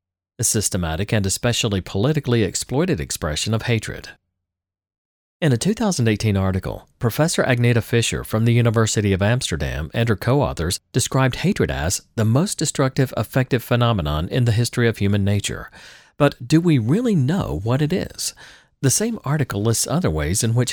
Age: 40-59